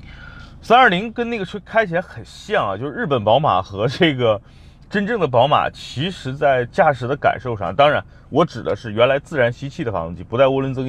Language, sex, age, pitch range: Chinese, male, 30-49, 120-160 Hz